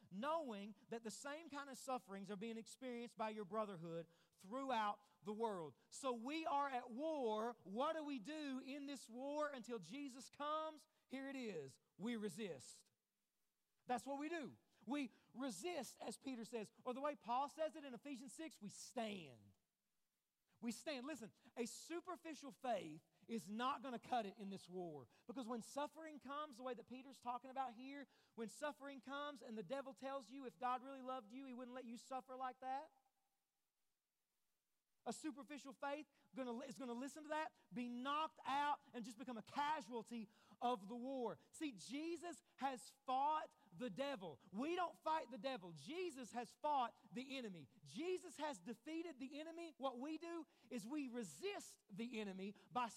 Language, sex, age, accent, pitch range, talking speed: English, male, 40-59, American, 225-290 Hz, 170 wpm